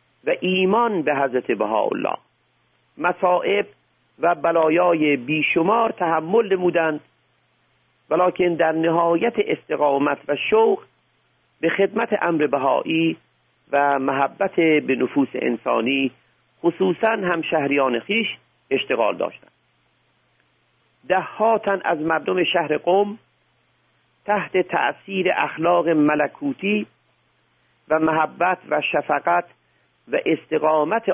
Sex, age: male, 50-69